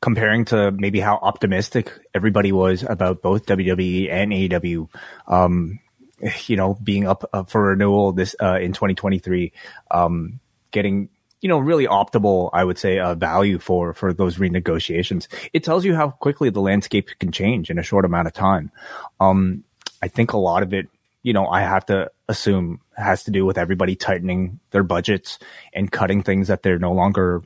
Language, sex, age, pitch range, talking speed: English, male, 30-49, 90-105 Hz, 180 wpm